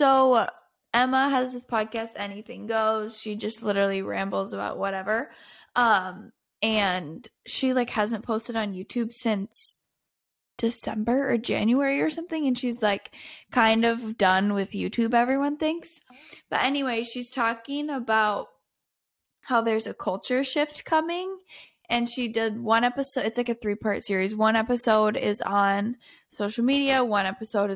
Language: English